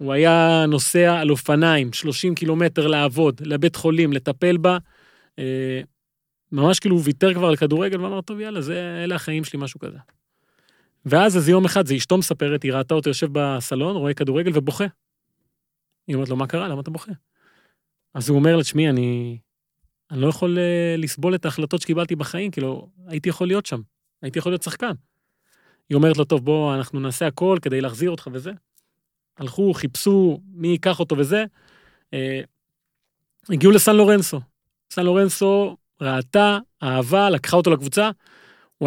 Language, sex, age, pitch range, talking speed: Hebrew, male, 30-49, 145-180 Hz, 160 wpm